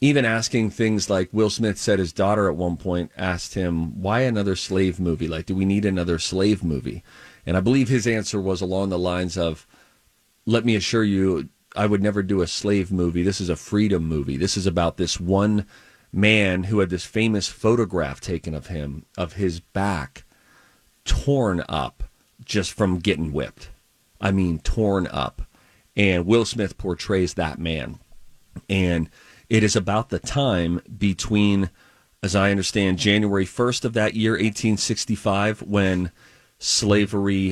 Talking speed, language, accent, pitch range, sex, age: 165 wpm, English, American, 90-105 Hz, male, 40-59